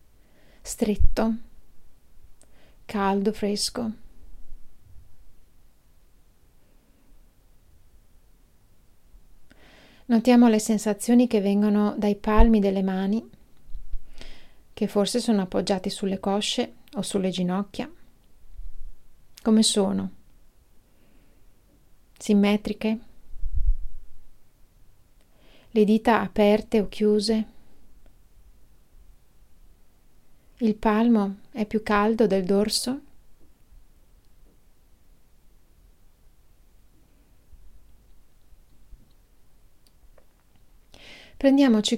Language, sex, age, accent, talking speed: Italian, female, 30-49, native, 55 wpm